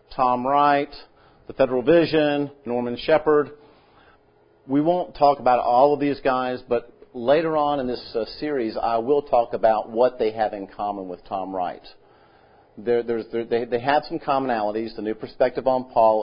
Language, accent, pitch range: English, American, 110-145 Hz